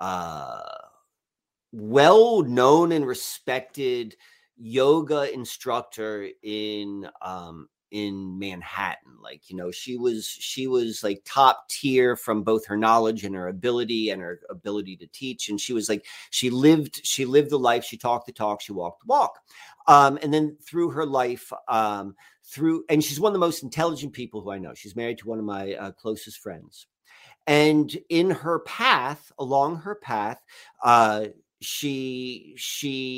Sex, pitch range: male, 110-150 Hz